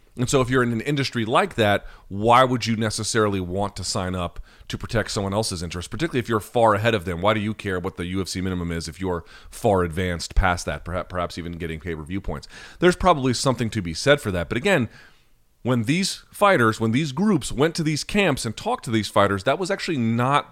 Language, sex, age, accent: English, male, 30-49, American